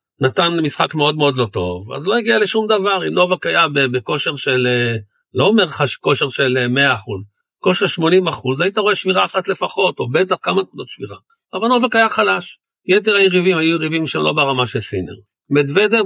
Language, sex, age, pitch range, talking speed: Hebrew, male, 50-69, 135-190 Hz, 170 wpm